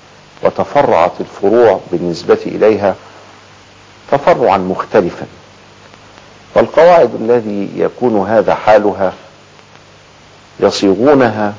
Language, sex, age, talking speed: Arabic, male, 50-69, 60 wpm